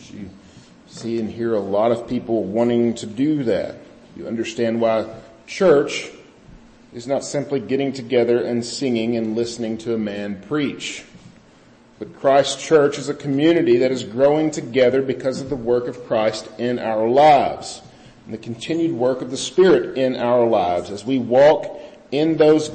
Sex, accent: male, American